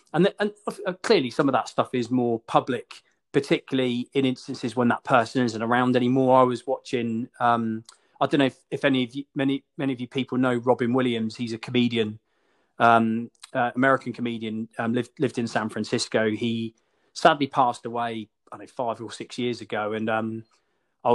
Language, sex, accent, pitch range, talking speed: English, male, British, 115-140 Hz, 195 wpm